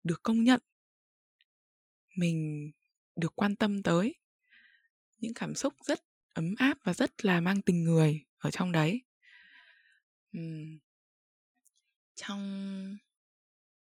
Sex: female